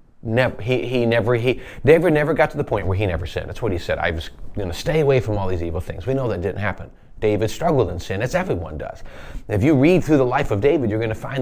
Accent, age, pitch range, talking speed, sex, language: American, 30-49, 110-145 Hz, 285 wpm, male, English